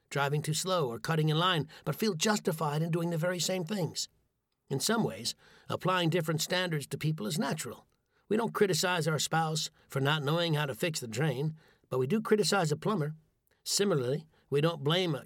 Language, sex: English, male